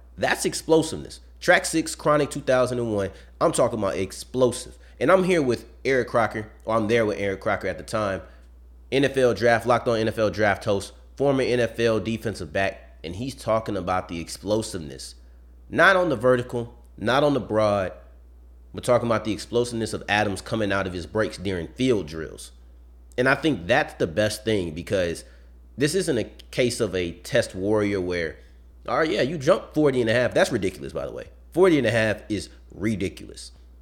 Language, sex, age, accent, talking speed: English, male, 30-49, American, 180 wpm